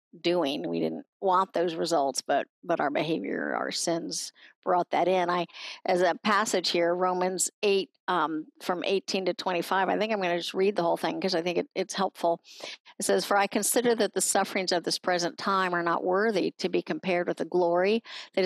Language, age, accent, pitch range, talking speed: English, 50-69, American, 175-205 Hz, 210 wpm